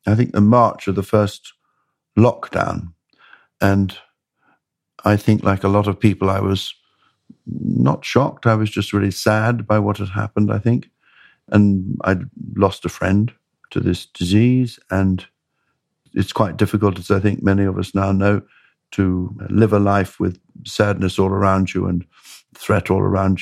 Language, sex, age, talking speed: English, male, 60-79, 165 wpm